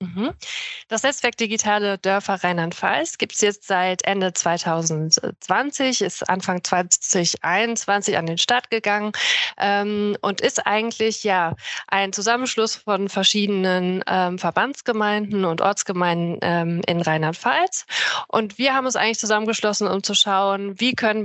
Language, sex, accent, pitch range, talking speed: German, female, German, 185-225 Hz, 125 wpm